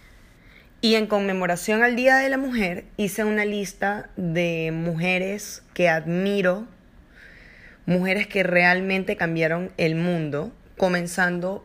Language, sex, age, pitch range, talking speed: English, female, 10-29, 175-205 Hz, 115 wpm